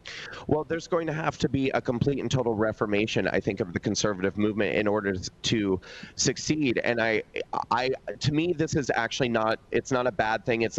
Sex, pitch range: male, 115-140 Hz